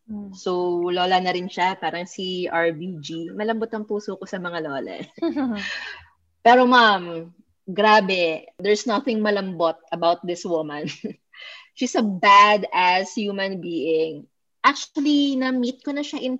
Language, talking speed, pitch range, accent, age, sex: English, 130 wpm, 175-220 Hz, Filipino, 20-39, female